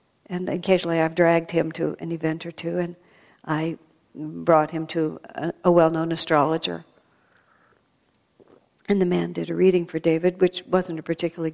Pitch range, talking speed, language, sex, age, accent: 160-200 Hz, 160 wpm, English, female, 60-79, American